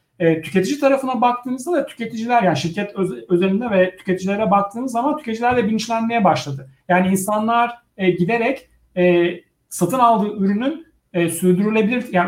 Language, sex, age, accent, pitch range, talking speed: Turkish, male, 60-79, native, 180-230 Hz, 130 wpm